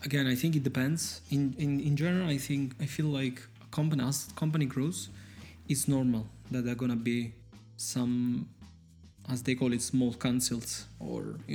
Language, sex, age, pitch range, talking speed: Italian, male, 20-39, 115-135 Hz, 185 wpm